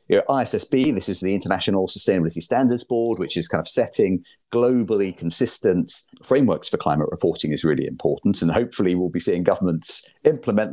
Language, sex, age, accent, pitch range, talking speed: English, male, 40-59, British, 85-115 Hz, 160 wpm